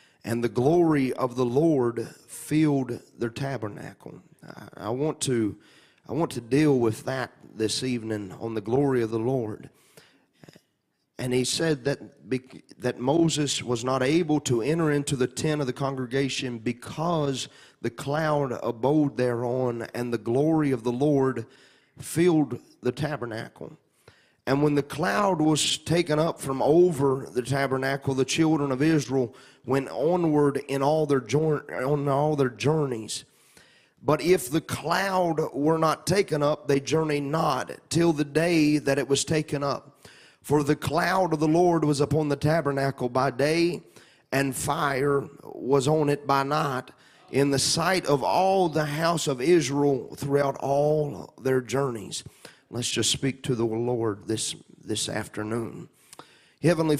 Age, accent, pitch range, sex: 30-49, American, 125-150 Hz, male